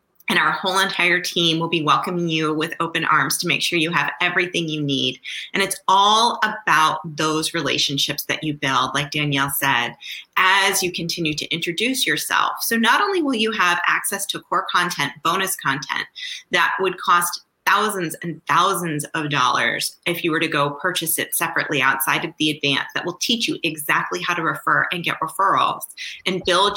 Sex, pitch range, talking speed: female, 160-195 Hz, 185 wpm